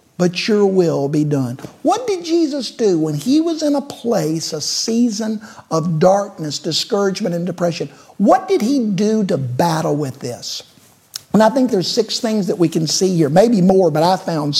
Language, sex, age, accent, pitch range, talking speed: English, male, 50-69, American, 150-205 Hz, 190 wpm